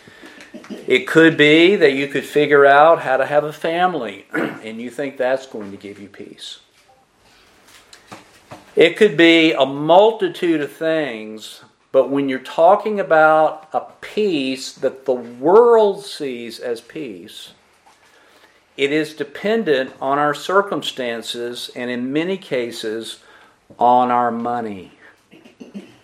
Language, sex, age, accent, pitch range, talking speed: English, male, 50-69, American, 135-180 Hz, 125 wpm